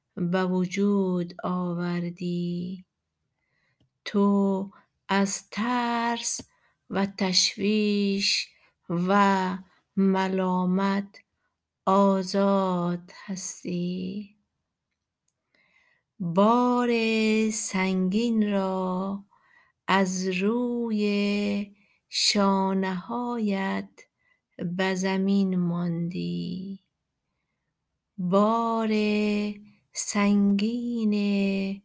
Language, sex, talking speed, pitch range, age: Persian, female, 45 wpm, 185-210 Hz, 50-69